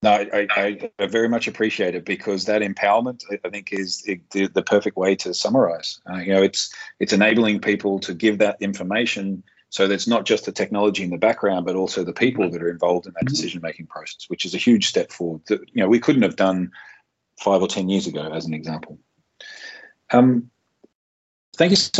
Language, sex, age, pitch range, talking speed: English, male, 40-59, 95-115 Hz, 210 wpm